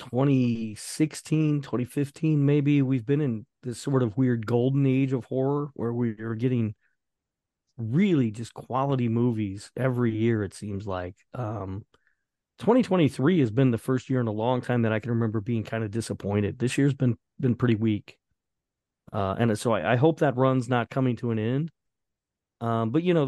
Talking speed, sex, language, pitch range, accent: 180 wpm, male, English, 110-130 Hz, American